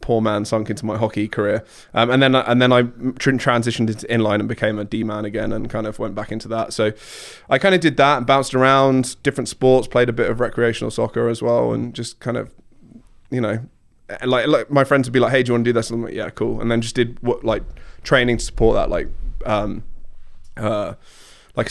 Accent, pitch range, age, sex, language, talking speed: British, 110-125 Hz, 20-39, male, English, 240 wpm